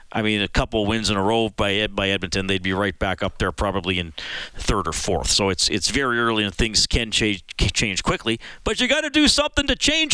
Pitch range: 115-165 Hz